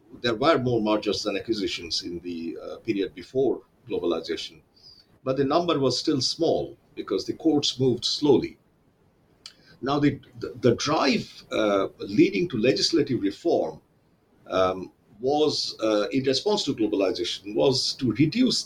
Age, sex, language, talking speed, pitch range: 50-69, male, English, 140 wpm, 105-160 Hz